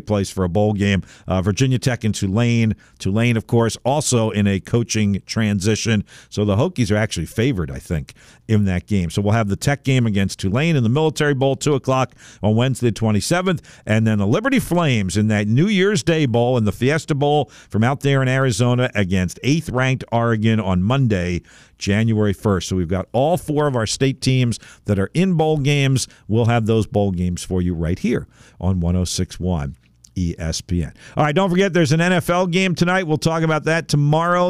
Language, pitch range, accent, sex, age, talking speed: English, 105-145 Hz, American, male, 50-69, 195 wpm